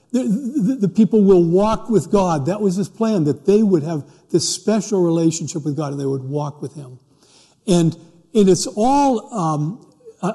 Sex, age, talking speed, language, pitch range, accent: male, 60-79, 190 wpm, English, 140-185 Hz, American